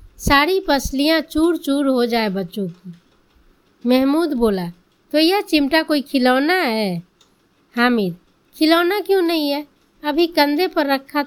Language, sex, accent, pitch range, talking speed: Hindi, female, native, 220-315 Hz, 135 wpm